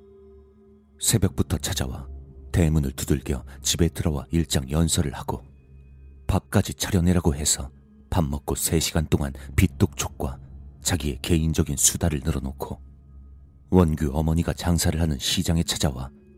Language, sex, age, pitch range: Korean, male, 40-59, 70-90 Hz